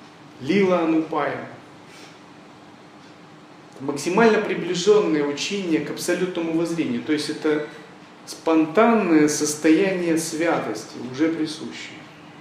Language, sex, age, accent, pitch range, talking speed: Russian, male, 40-59, native, 150-175 Hz, 75 wpm